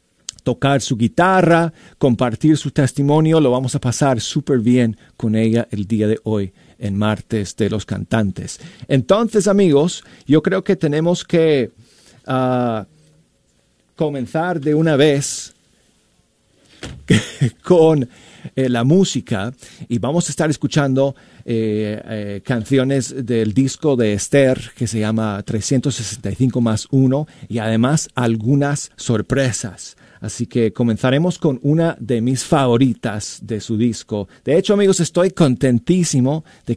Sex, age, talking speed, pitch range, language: male, 40-59, 125 wpm, 110-135 Hz, Spanish